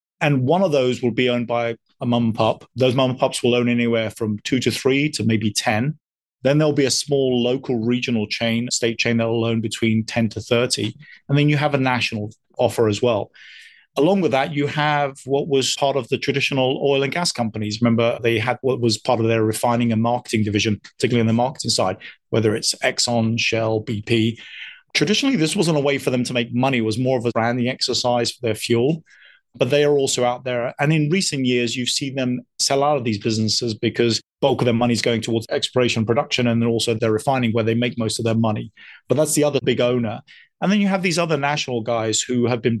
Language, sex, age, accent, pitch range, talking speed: English, male, 30-49, British, 115-135 Hz, 235 wpm